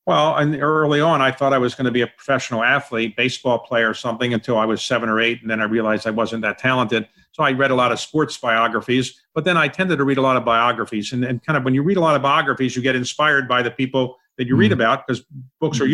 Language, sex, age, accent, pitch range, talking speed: English, male, 50-69, American, 125-145 Hz, 280 wpm